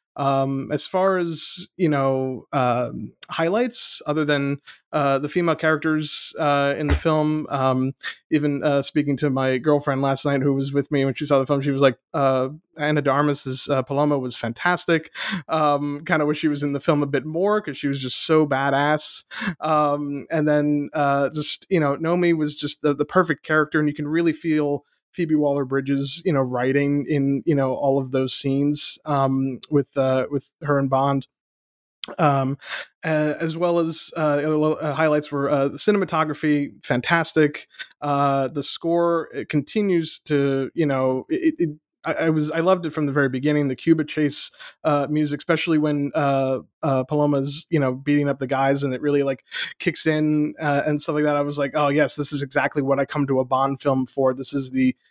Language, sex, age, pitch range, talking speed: English, male, 20-39, 140-155 Hz, 195 wpm